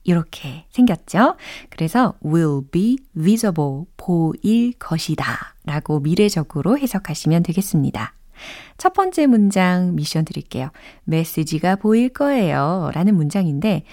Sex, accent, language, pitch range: female, native, Korean, 160-250 Hz